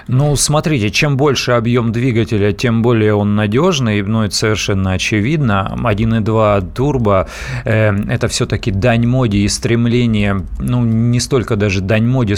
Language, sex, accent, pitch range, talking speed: Russian, male, native, 105-130 Hz, 145 wpm